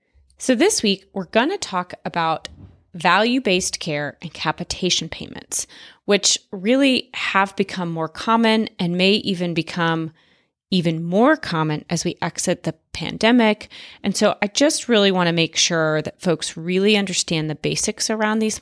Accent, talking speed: American, 155 wpm